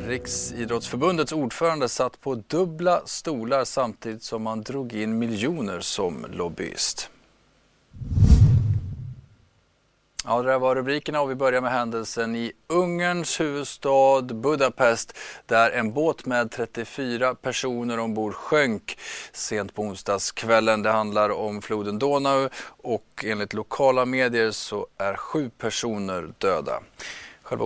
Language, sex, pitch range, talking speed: Swedish, male, 105-130 Hz, 115 wpm